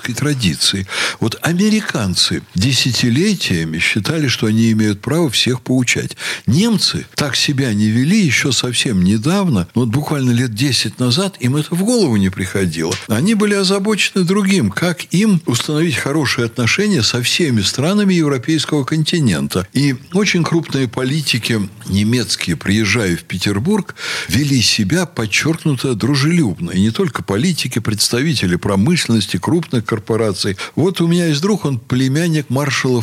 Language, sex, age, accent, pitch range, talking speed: Russian, male, 60-79, native, 110-160 Hz, 130 wpm